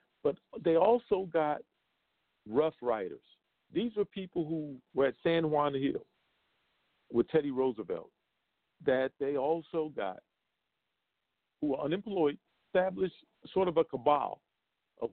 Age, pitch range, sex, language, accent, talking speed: 50-69, 115-170 Hz, male, English, American, 125 wpm